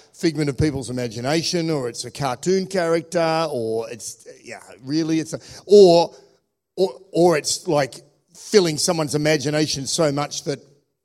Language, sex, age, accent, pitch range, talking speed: English, male, 50-69, Australian, 135-170 Hz, 140 wpm